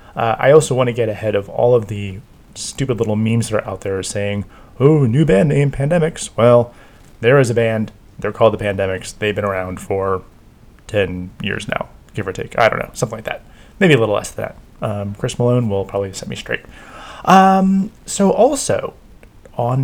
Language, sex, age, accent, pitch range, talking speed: English, male, 30-49, American, 110-140 Hz, 205 wpm